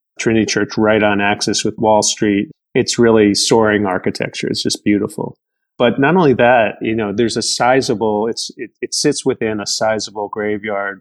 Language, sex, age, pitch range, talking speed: English, male, 30-49, 105-110 Hz, 175 wpm